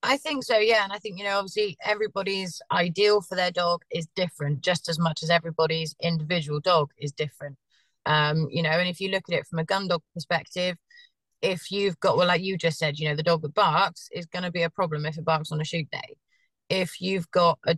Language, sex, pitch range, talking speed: English, female, 155-185 Hz, 240 wpm